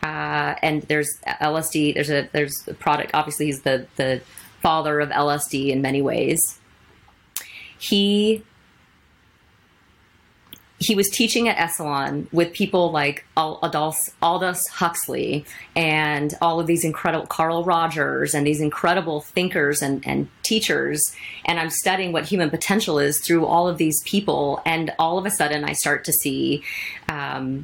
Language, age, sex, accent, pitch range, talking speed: English, 30-49, female, American, 145-170 Hz, 145 wpm